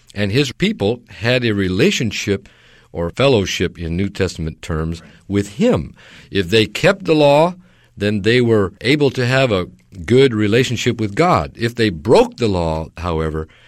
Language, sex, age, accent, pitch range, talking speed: English, male, 50-69, American, 85-120 Hz, 160 wpm